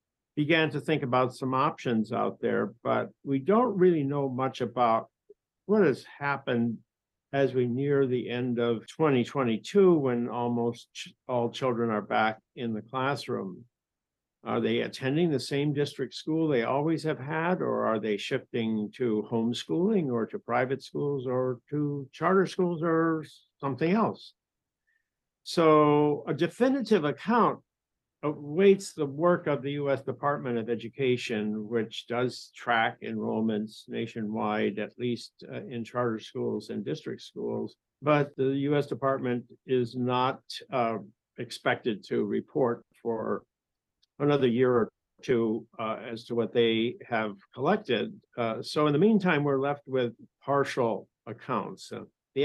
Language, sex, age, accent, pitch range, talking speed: English, male, 50-69, American, 115-150 Hz, 140 wpm